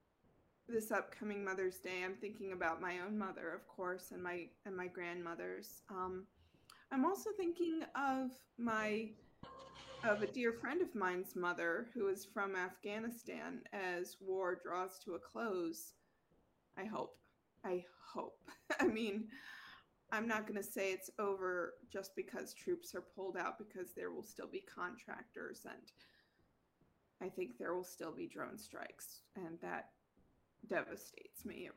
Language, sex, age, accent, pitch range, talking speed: English, female, 20-39, American, 185-255 Hz, 150 wpm